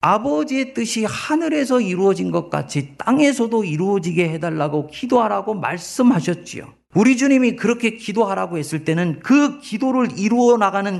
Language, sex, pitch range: Korean, male, 160-250 Hz